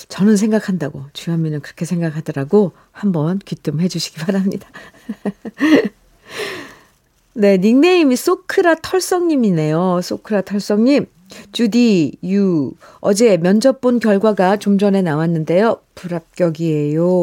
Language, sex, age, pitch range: Korean, female, 50-69, 175-235 Hz